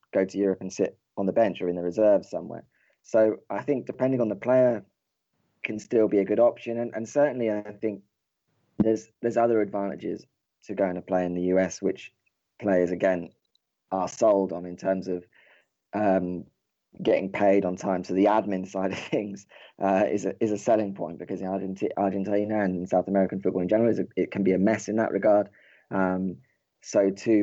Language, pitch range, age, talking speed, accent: English, 90-105 Hz, 20-39, 195 wpm, British